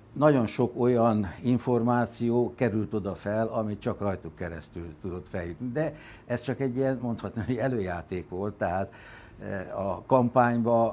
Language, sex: Hungarian, male